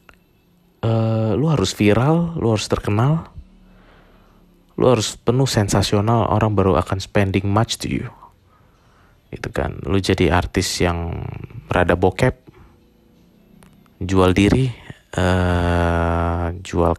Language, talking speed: Indonesian, 100 wpm